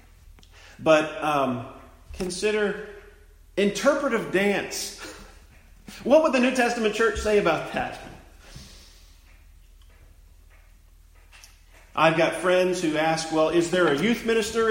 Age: 40-59